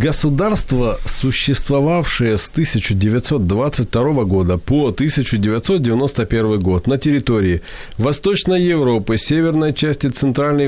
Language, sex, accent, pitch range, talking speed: Ukrainian, male, native, 110-150 Hz, 85 wpm